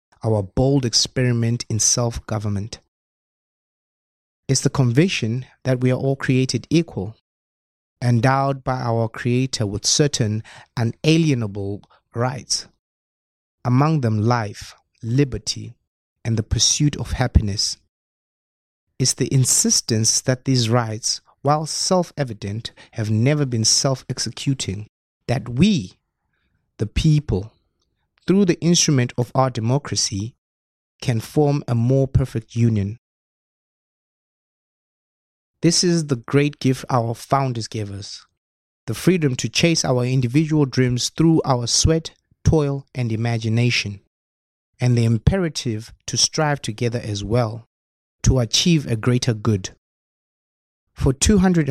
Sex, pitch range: male, 105-135 Hz